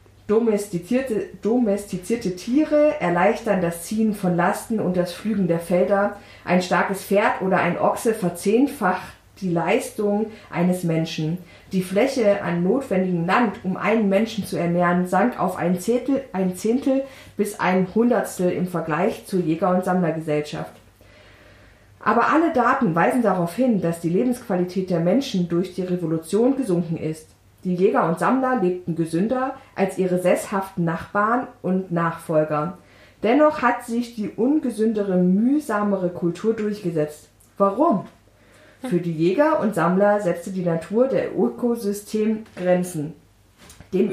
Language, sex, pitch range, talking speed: German, female, 170-220 Hz, 130 wpm